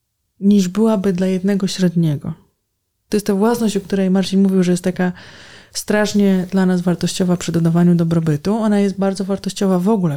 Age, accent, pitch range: 20-39, native, 165-200 Hz